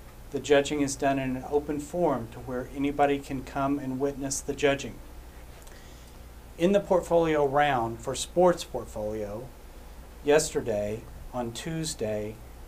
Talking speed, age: 130 wpm, 50-69